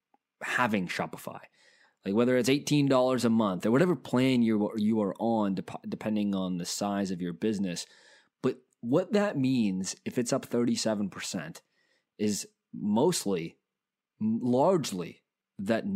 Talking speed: 125 wpm